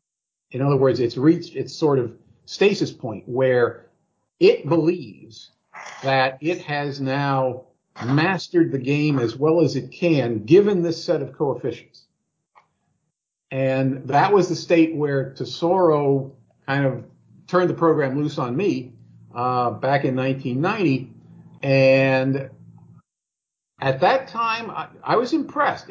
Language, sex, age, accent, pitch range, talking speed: English, male, 50-69, American, 130-175 Hz, 130 wpm